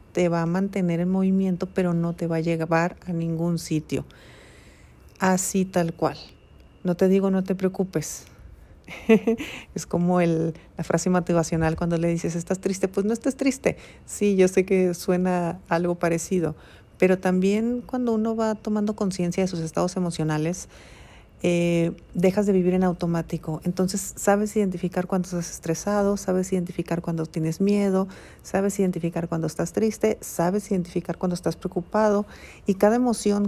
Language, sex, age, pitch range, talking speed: Spanish, female, 40-59, 170-200 Hz, 155 wpm